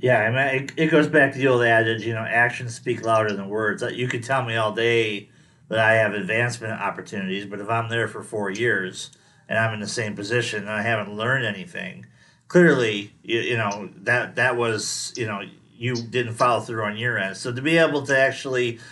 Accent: American